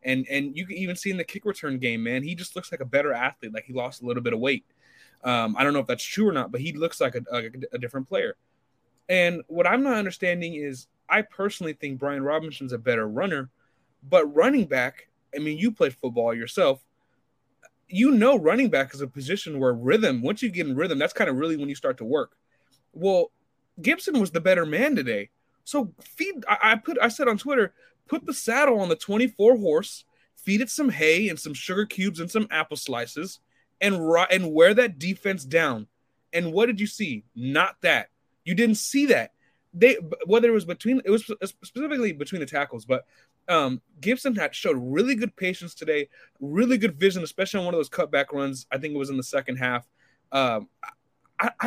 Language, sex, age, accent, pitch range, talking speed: English, male, 20-39, American, 140-230 Hz, 215 wpm